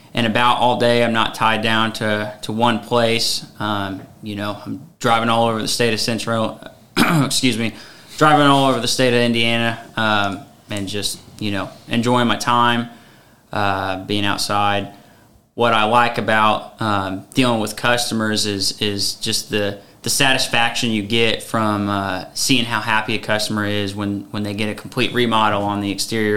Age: 20-39